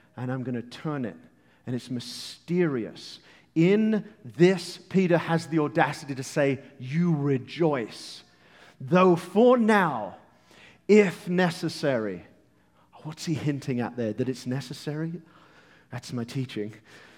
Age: 40-59